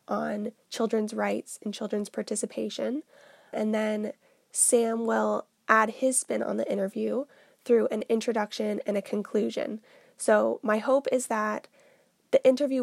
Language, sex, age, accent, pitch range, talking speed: English, female, 20-39, American, 210-235 Hz, 135 wpm